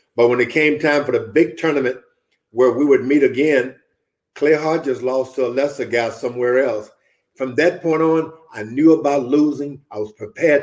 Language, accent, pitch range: English, American, 115-160 Hz